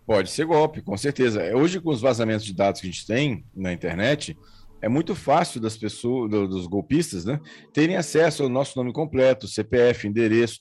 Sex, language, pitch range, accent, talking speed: male, Portuguese, 105-140 Hz, Brazilian, 185 wpm